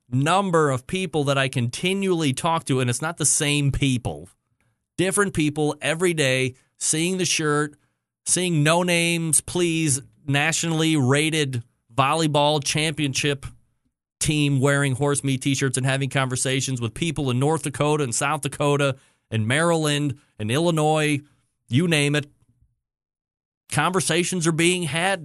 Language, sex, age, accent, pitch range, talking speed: English, male, 30-49, American, 135-180 Hz, 135 wpm